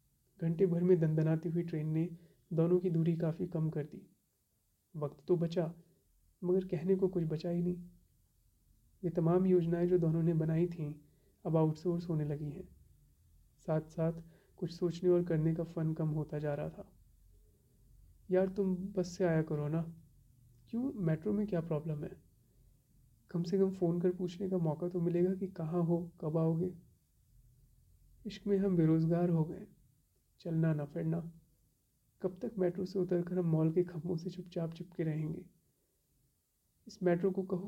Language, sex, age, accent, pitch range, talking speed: Hindi, male, 30-49, native, 130-180 Hz, 165 wpm